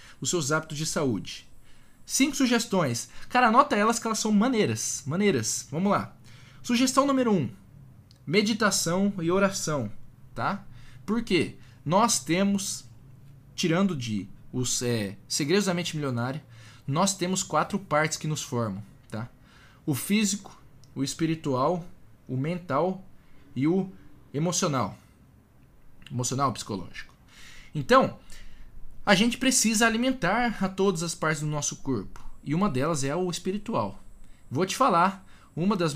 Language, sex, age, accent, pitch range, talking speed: Portuguese, male, 20-39, Brazilian, 130-190 Hz, 130 wpm